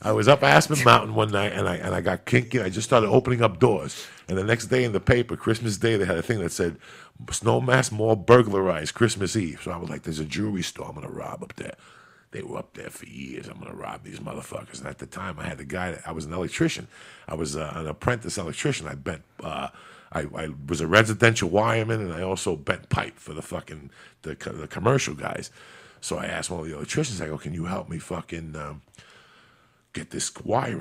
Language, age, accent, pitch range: English, 50-69, American, 85-110 Hz